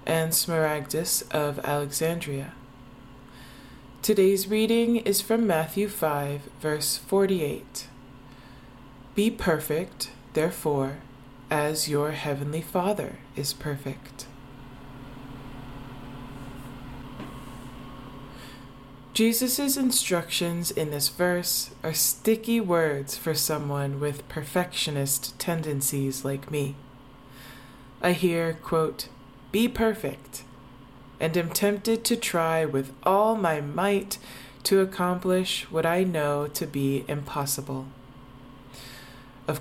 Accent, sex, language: American, female, English